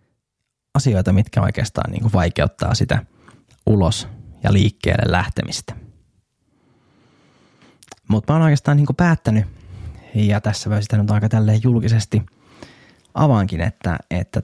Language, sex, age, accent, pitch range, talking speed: Finnish, male, 20-39, native, 100-120 Hz, 110 wpm